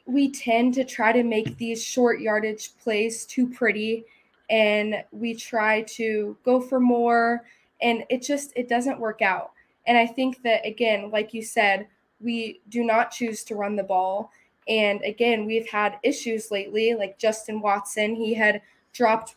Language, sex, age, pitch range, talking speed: English, female, 20-39, 210-235 Hz, 165 wpm